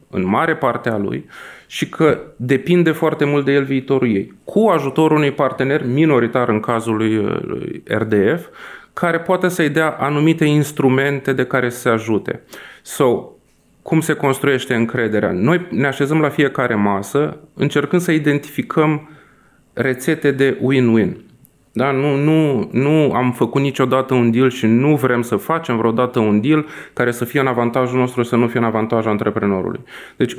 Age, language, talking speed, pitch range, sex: 30-49, Romanian, 160 wpm, 120-150 Hz, male